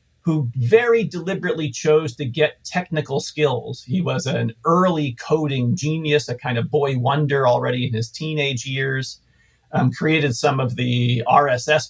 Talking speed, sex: 150 wpm, male